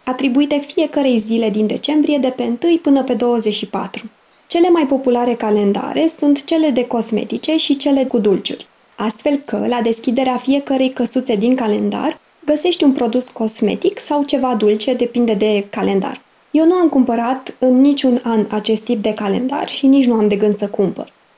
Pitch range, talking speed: 225-290 Hz, 170 wpm